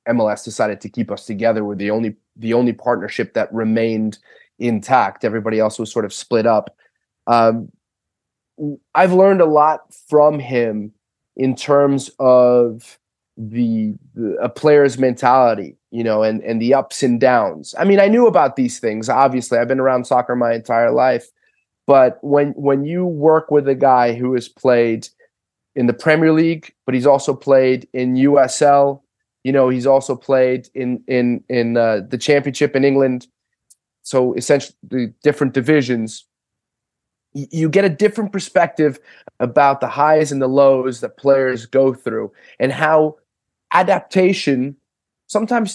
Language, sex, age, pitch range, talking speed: English, male, 30-49, 125-160 Hz, 155 wpm